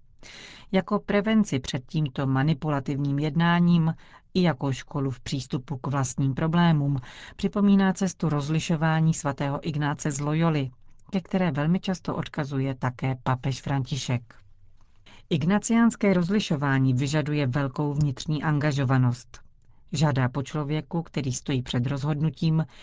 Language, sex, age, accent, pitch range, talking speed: Czech, female, 40-59, native, 130-165 Hz, 110 wpm